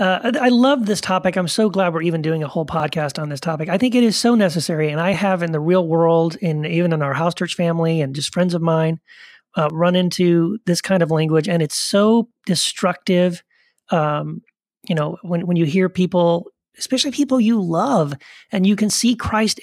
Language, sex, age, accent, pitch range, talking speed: English, male, 30-49, American, 155-200 Hz, 215 wpm